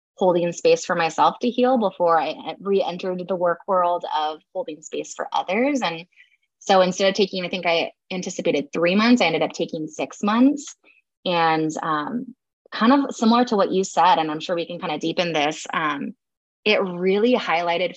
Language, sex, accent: English, female, American